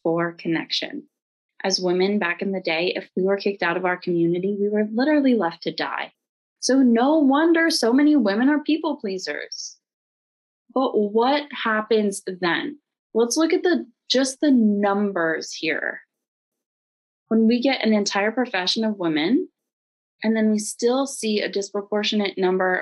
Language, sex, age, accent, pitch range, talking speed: English, female, 20-39, American, 185-255 Hz, 155 wpm